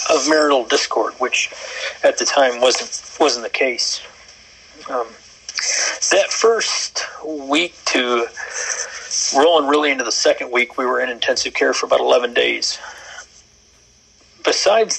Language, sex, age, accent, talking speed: English, male, 40-59, American, 130 wpm